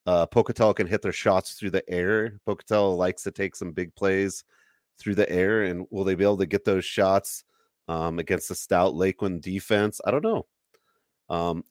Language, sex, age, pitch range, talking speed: English, male, 30-49, 85-100 Hz, 195 wpm